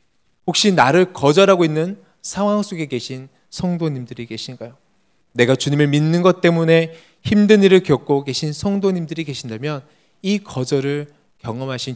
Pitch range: 110-160 Hz